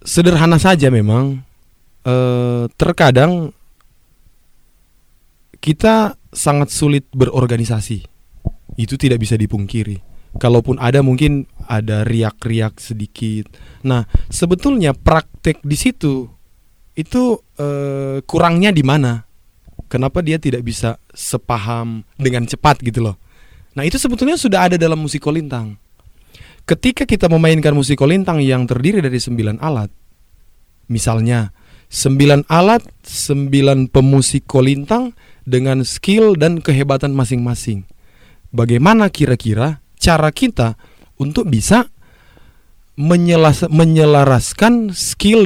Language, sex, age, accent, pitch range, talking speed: Indonesian, male, 20-39, native, 110-150 Hz, 95 wpm